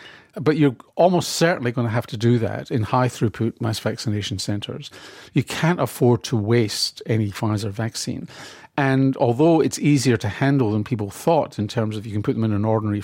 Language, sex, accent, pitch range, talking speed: English, male, British, 110-140 Hz, 195 wpm